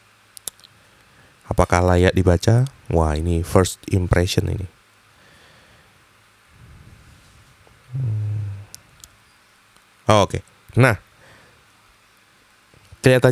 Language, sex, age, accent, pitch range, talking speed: Indonesian, male, 20-39, native, 95-115 Hz, 60 wpm